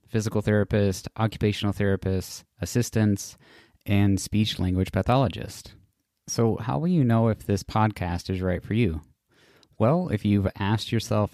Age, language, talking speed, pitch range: 20-39, English, 130 wpm, 95-110 Hz